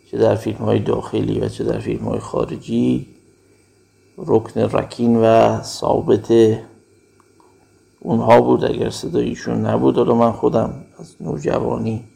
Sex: male